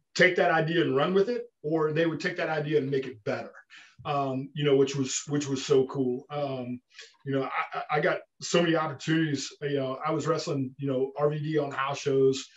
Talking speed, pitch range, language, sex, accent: 220 wpm, 135-160 Hz, Spanish, male, American